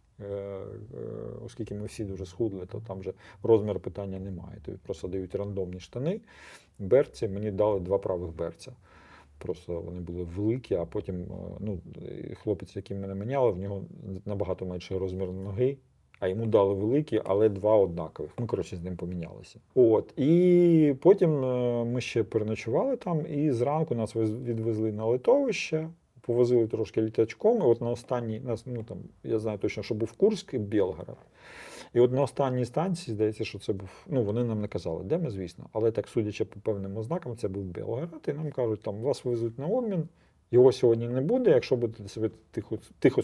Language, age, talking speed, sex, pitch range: Ukrainian, 40-59, 175 wpm, male, 95-125 Hz